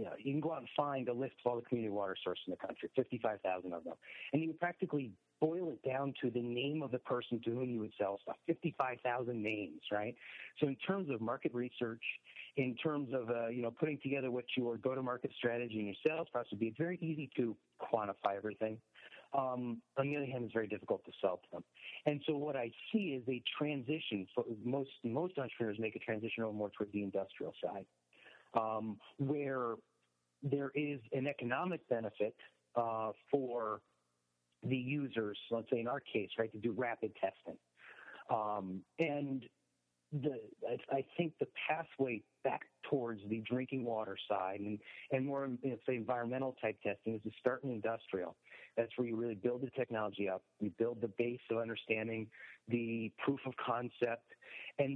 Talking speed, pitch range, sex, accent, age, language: 190 wpm, 110-140 Hz, male, American, 40-59, English